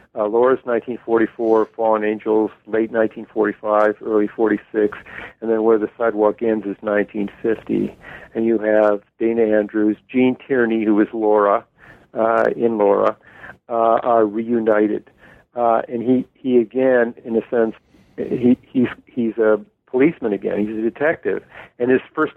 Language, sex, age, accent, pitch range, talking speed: English, male, 50-69, American, 110-130 Hz, 140 wpm